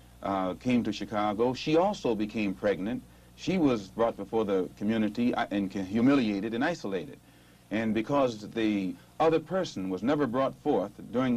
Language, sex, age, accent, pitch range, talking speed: English, male, 60-79, American, 100-140 Hz, 150 wpm